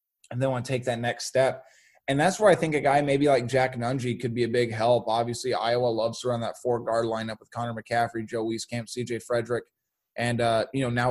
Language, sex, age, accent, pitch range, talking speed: English, male, 20-39, American, 120-140 Hz, 240 wpm